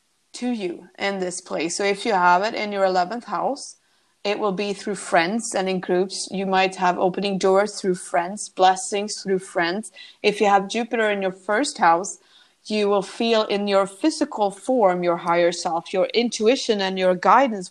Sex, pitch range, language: female, 185-225 Hz, English